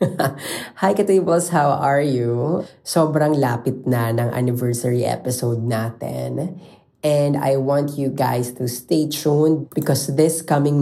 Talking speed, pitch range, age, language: 130 wpm, 125-145 Hz, 20-39, Filipino